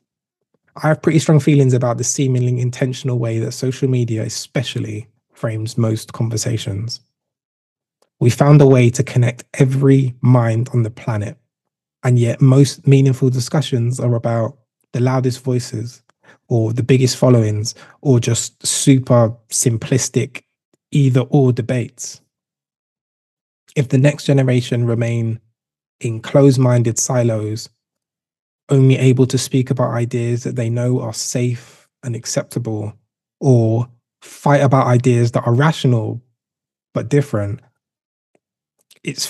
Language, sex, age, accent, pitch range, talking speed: English, male, 20-39, British, 115-135 Hz, 120 wpm